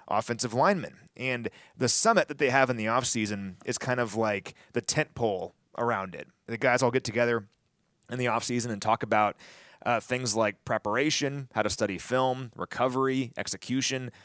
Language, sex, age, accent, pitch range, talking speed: English, male, 30-49, American, 110-145 Hz, 175 wpm